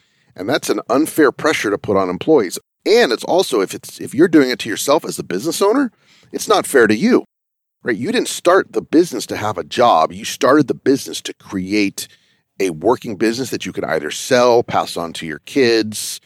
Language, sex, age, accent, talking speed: English, male, 40-59, American, 215 wpm